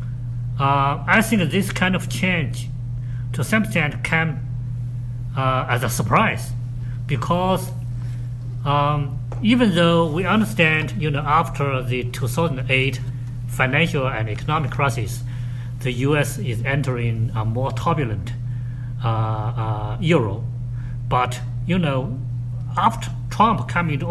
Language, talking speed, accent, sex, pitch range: English, 125 wpm, Japanese, male, 120-135 Hz